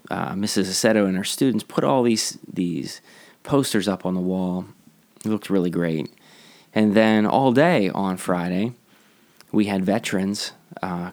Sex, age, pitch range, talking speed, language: male, 20-39, 90-105 Hz, 155 wpm, English